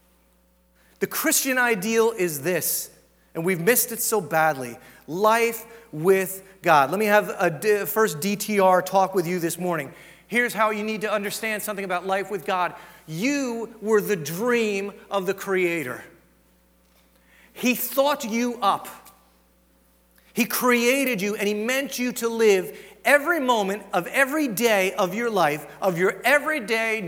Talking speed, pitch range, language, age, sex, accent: 150 wpm, 180-240 Hz, English, 40-59, male, American